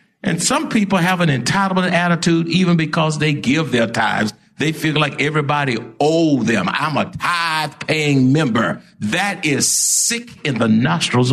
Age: 60-79